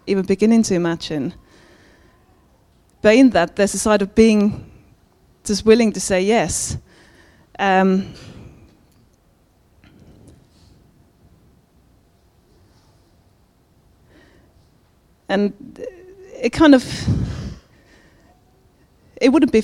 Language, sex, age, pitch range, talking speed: English, female, 30-49, 190-230 Hz, 75 wpm